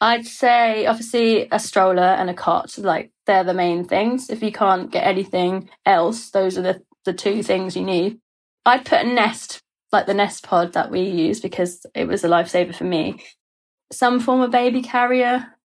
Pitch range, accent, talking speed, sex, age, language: 190-225 Hz, British, 190 wpm, female, 20-39, English